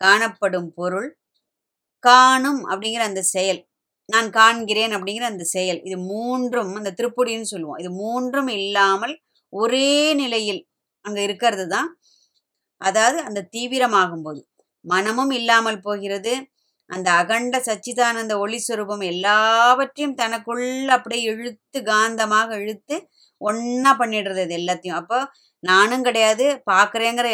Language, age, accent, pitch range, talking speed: Tamil, 20-39, native, 185-230 Hz, 110 wpm